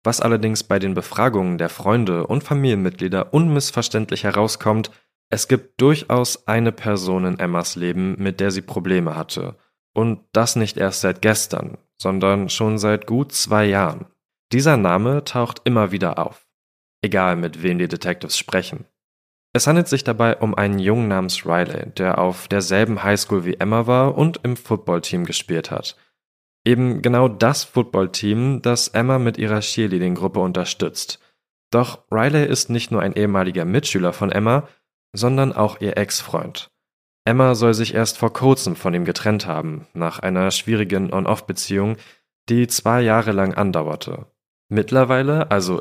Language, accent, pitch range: German, German, 95-120 Hz